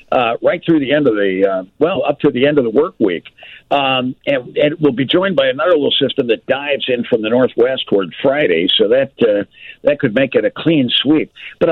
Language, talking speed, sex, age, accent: English, 230 wpm, male, 60-79, American